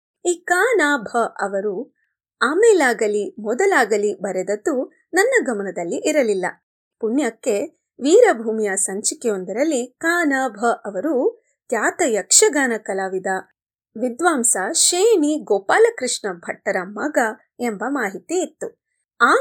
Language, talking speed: Kannada, 85 wpm